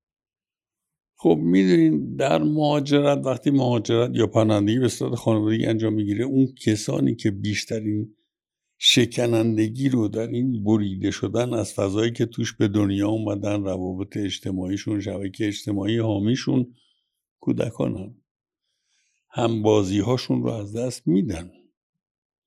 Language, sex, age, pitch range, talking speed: Persian, male, 60-79, 105-130 Hz, 110 wpm